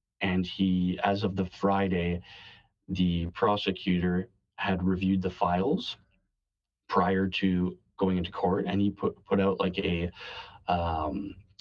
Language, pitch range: English, 90-105 Hz